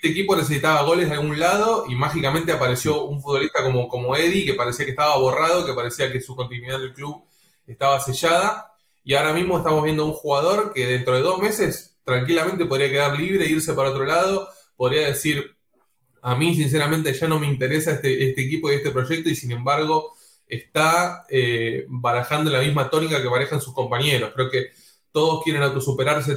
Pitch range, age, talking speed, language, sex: 130-160 Hz, 20-39, 190 wpm, English, male